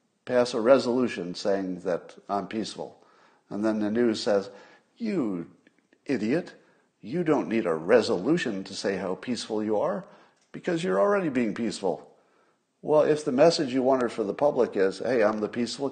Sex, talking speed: male, 165 wpm